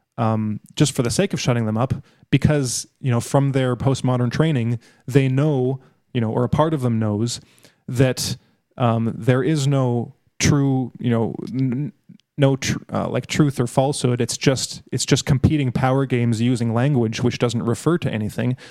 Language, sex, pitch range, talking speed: English, male, 120-140 Hz, 175 wpm